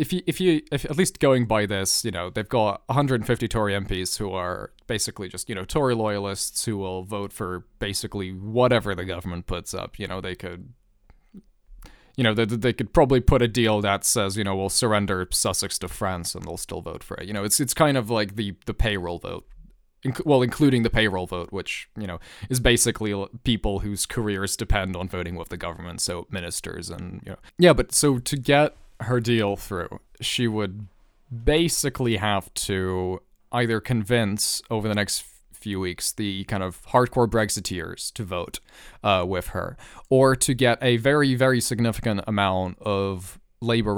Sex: male